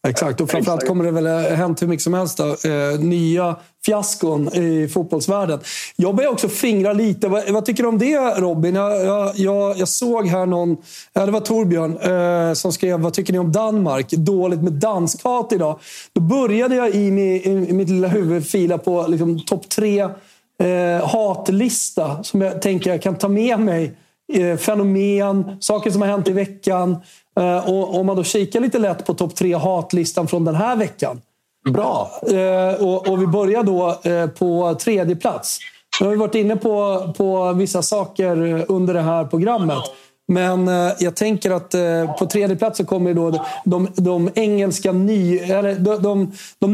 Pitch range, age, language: 170-205 Hz, 40-59, Swedish